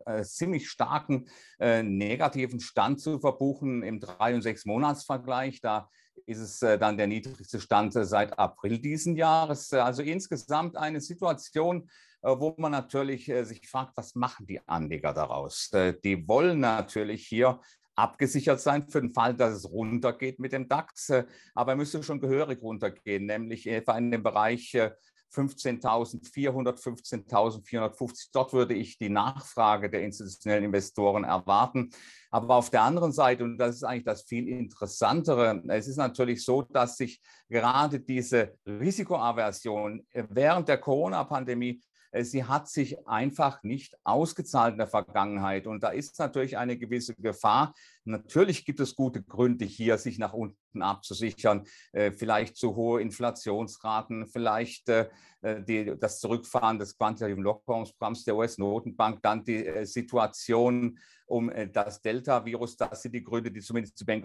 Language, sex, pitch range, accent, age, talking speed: German, male, 110-135 Hz, German, 50-69, 150 wpm